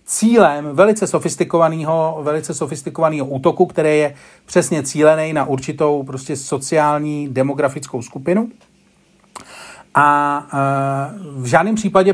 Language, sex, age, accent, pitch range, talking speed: Czech, male, 40-59, native, 145-185 Hz, 105 wpm